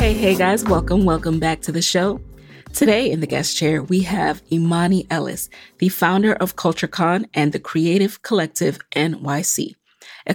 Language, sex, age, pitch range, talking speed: English, female, 30-49, 160-205 Hz, 160 wpm